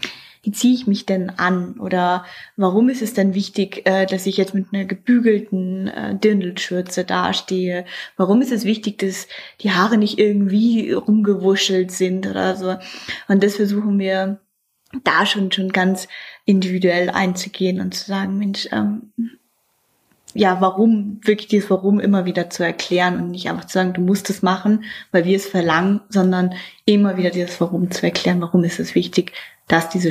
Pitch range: 190-220 Hz